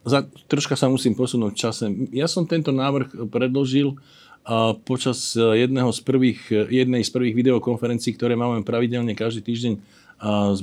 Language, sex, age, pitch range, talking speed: Slovak, male, 50-69, 120-140 Hz, 135 wpm